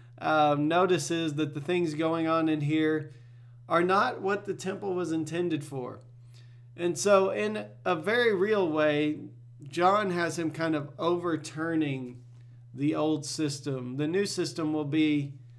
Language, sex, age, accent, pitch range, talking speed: English, male, 40-59, American, 125-170 Hz, 145 wpm